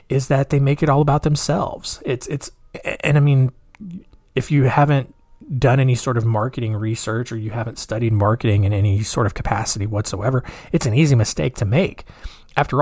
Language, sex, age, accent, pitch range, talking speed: English, male, 20-39, American, 115-145 Hz, 185 wpm